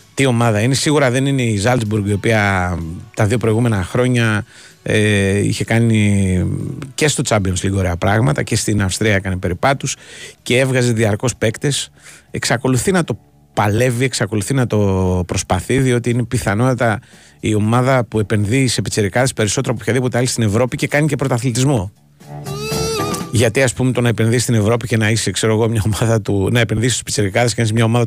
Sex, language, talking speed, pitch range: male, Greek, 175 wpm, 105-130 Hz